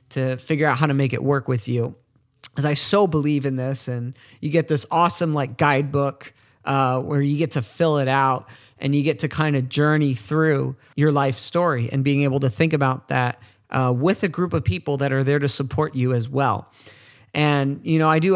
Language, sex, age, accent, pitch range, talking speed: English, male, 30-49, American, 130-160 Hz, 220 wpm